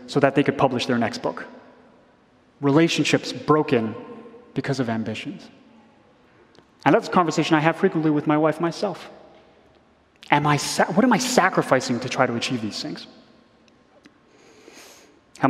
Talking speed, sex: 135 wpm, male